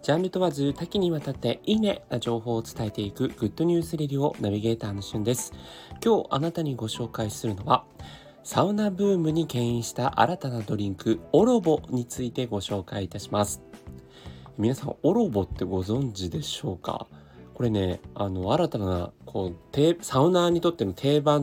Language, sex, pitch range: Japanese, male, 100-165 Hz